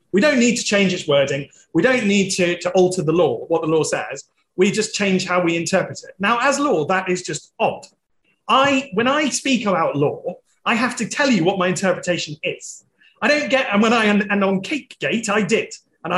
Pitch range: 180-245 Hz